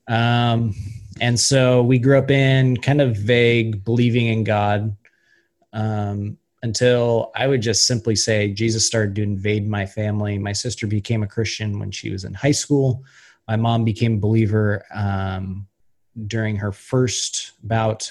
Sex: male